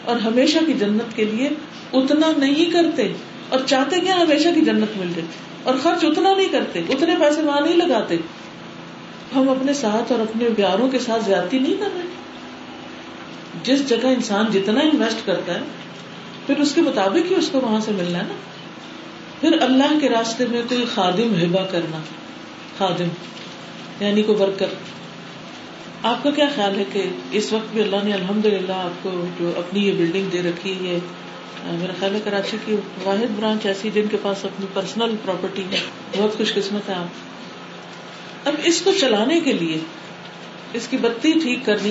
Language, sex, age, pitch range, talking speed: Urdu, female, 50-69, 195-275 Hz, 180 wpm